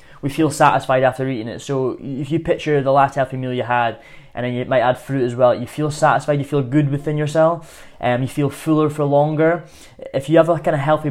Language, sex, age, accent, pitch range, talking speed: English, male, 10-29, British, 130-150 Hz, 250 wpm